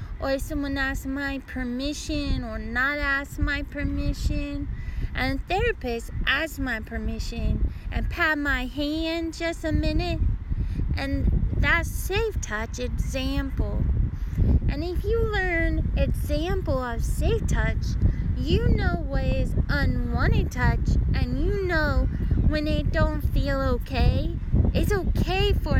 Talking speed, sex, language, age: 125 wpm, female, English, 20-39